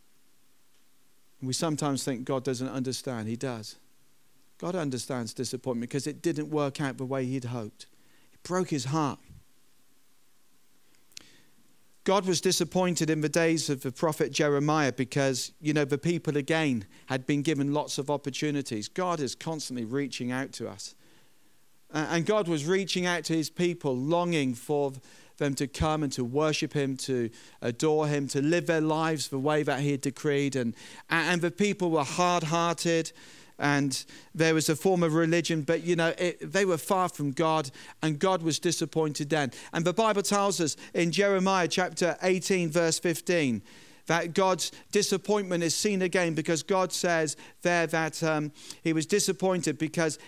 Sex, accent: male, British